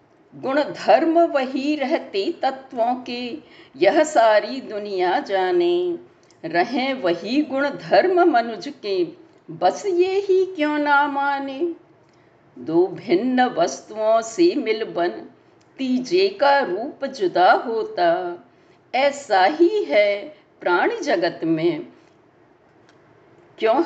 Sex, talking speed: female, 100 wpm